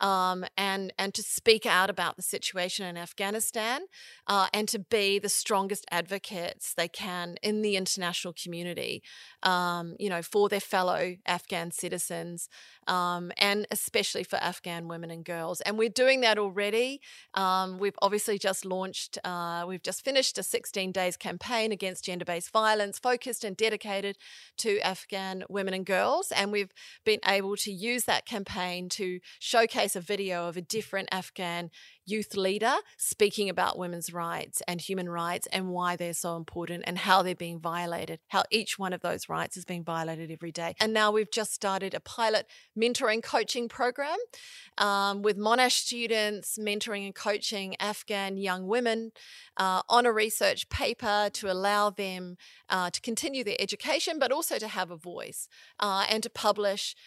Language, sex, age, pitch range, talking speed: English, female, 30-49, 180-215 Hz, 165 wpm